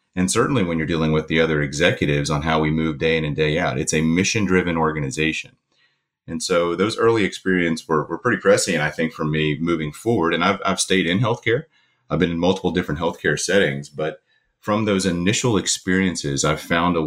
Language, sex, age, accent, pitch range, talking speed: English, male, 30-49, American, 80-95 Hz, 205 wpm